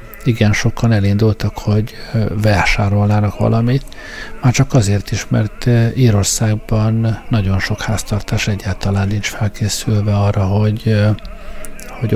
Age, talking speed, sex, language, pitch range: 50-69, 105 wpm, male, Hungarian, 105-120 Hz